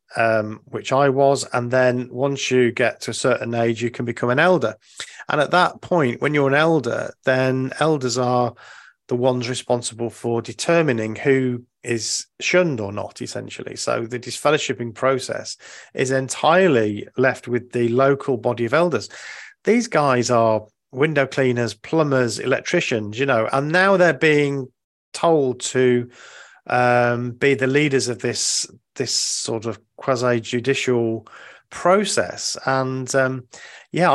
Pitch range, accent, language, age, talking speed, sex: 120-140 Hz, British, English, 40-59, 140 wpm, male